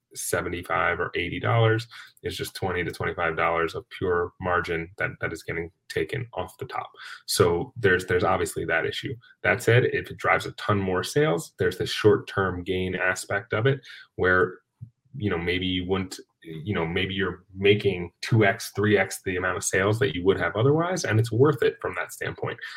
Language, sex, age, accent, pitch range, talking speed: English, male, 30-49, American, 95-135 Hz, 195 wpm